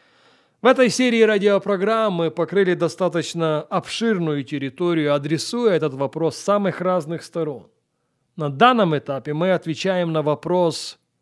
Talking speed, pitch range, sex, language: 120 wpm, 160-235 Hz, male, Russian